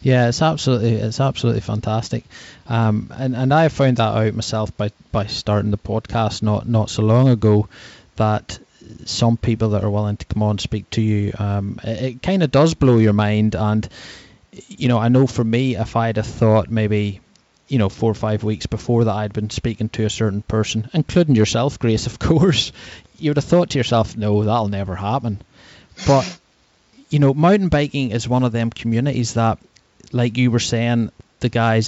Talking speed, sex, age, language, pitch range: 195 wpm, male, 20-39, English, 110-130 Hz